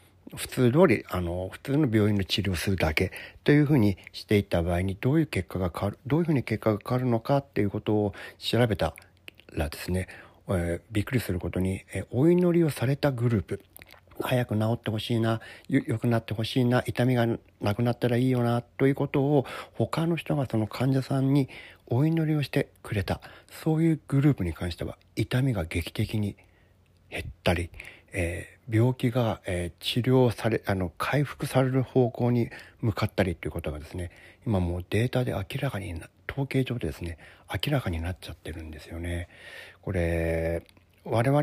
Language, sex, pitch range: Japanese, male, 90-130 Hz